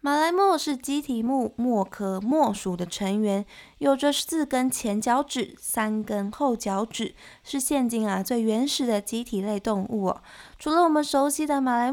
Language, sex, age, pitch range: Chinese, female, 20-39, 210-295 Hz